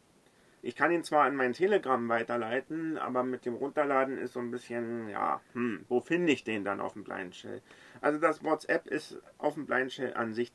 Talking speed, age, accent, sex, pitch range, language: 200 wpm, 40-59, German, male, 125-170 Hz, German